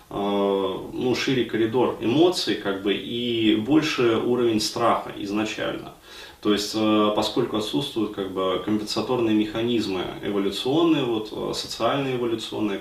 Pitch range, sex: 105-120 Hz, male